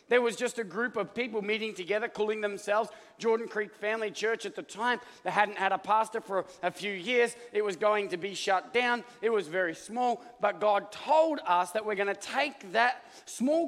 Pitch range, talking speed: 205-250 Hz, 215 wpm